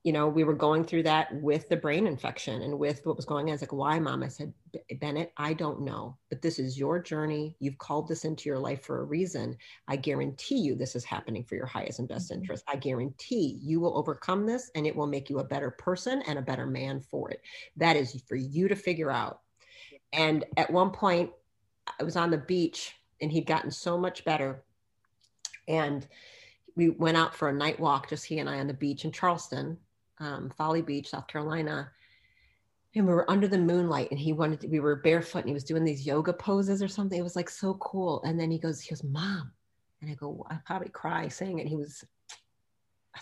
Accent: American